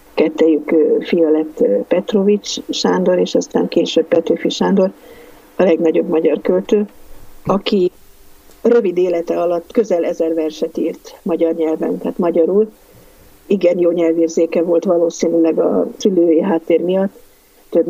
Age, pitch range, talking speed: 50-69, 165-205 Hz, 115 wpm